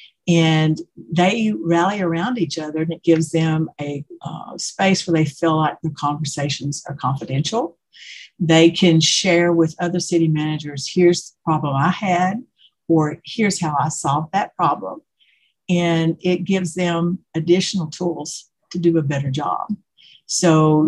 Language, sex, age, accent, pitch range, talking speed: English, female, 60-79, American, 150-180 Hz, 150 wpm